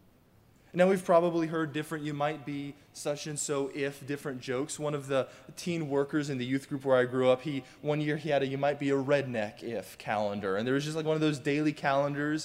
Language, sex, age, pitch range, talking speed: English, male, 20-39, 120-160 Hz, 190 wpm